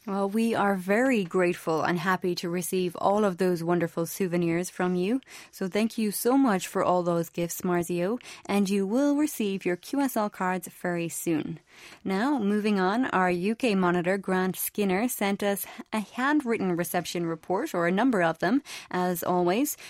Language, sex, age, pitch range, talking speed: English, female, 20-39, 180-225 Hz, 170 wpm